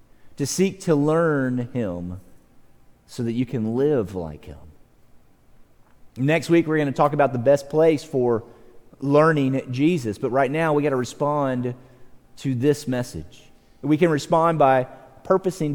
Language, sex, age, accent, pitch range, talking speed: English, male, 30-49, American, 120-160 Hz, 150 wpm